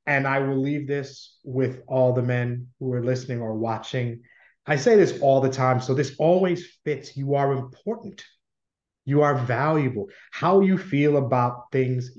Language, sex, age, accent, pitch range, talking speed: English, male, 30-49, American, 115-140 Hz, 170 wpm